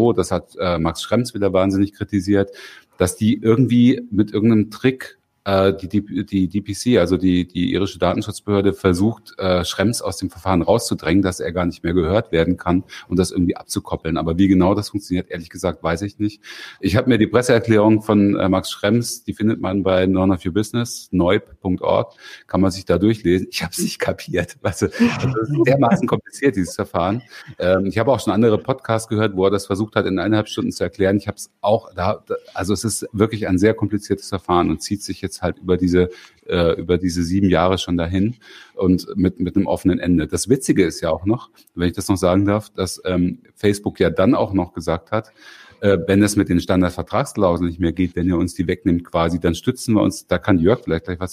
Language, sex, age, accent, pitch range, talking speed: German, male, 40-59, German, 90-105 Hz, 205 wpm